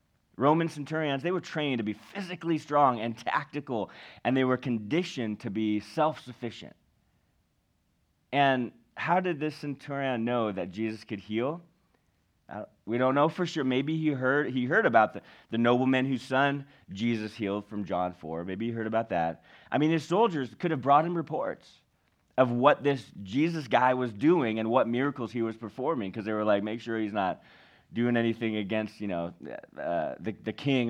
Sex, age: male, 30-49